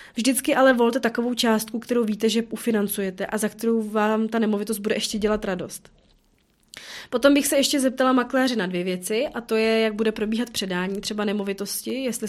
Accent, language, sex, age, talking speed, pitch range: native, Czech, female, 20-39, 185 wpm, 195-225 Hz